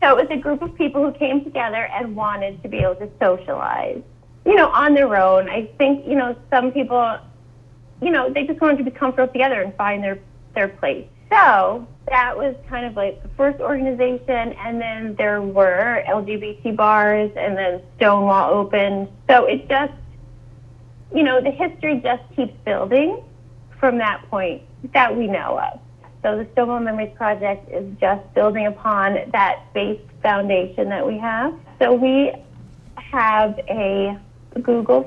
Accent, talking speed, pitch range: American, 170 wpm, 195-265 Hz